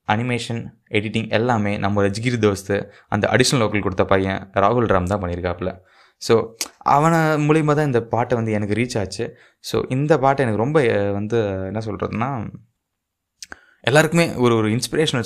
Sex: male